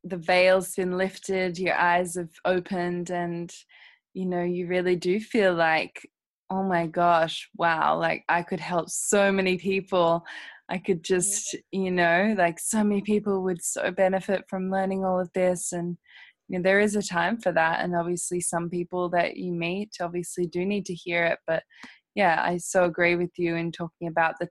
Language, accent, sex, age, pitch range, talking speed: English, Australian, female, 20-39, 170-190 Hz, 190 wpm